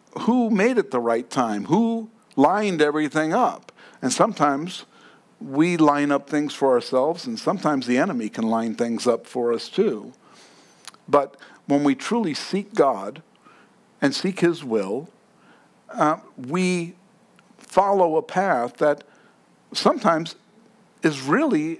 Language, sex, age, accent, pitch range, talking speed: English, male, 60-79, American, 140-205 Hz, 130 wpm